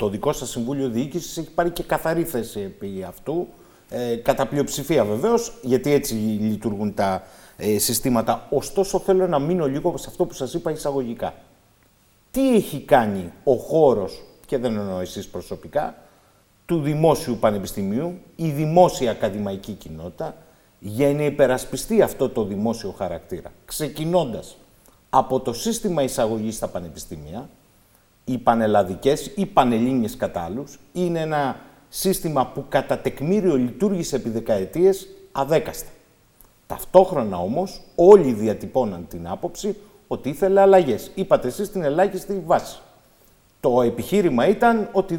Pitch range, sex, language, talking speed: 120-190 Hz, male, Greek, 125 wpm